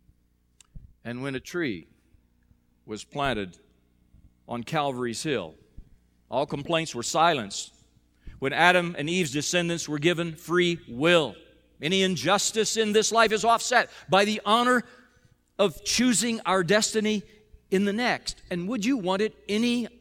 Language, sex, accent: English, male, American